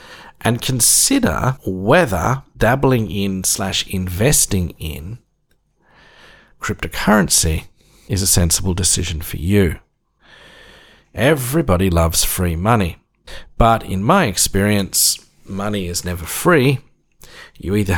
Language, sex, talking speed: English, male, 95 wpm